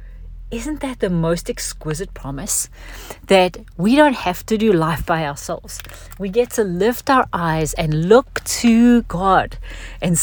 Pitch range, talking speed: 160-220 Hz, 155 wpm